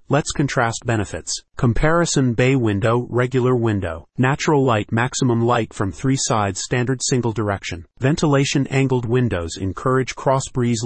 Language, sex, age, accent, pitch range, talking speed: English, male, 40-59, American, 110-135 Hz, 135 wpm